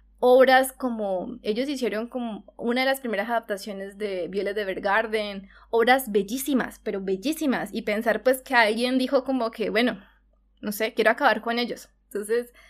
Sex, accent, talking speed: female, Colombian, 155 wpm